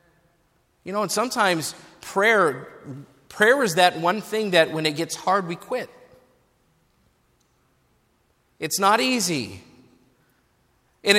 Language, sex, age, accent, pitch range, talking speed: English, male, 40-59, American, 190-240 Hz, 115 wpm